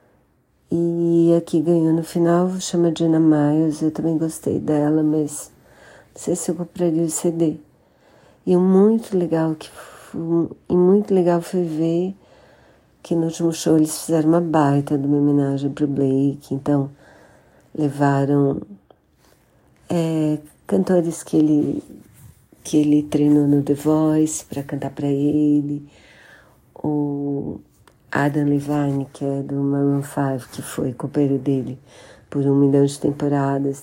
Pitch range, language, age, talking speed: 145-160 Hz, Portuguese, 40-59, 135 wpm